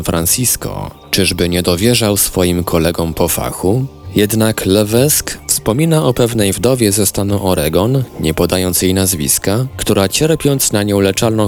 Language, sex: Polish, male